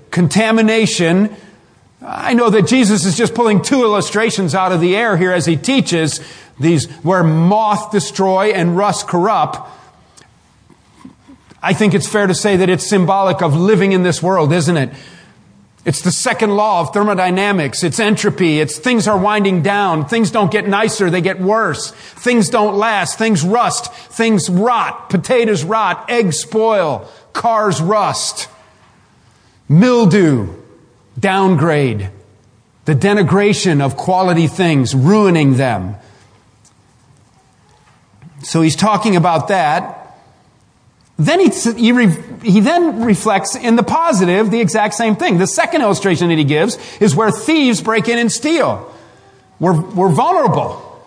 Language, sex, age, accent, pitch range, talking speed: English, male, 40-59, American, 165-220 Hz, 140 wpm